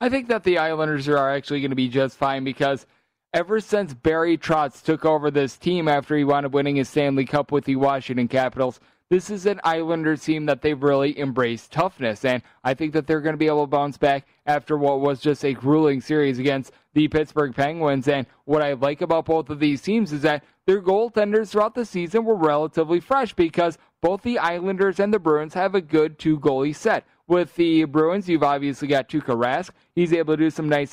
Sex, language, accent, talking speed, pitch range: male, English, American, 215 wpm, 140-170 Hz